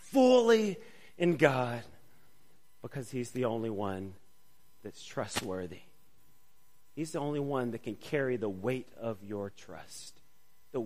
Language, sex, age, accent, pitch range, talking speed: English, male, 40-59, American, 115-160 Hz, 125 wpm